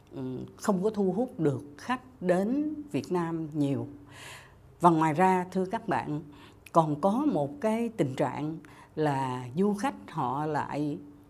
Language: Vietnamese